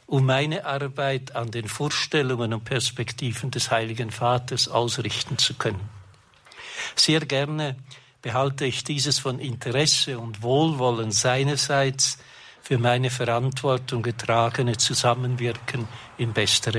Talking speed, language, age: 110 wpm, German, 60-79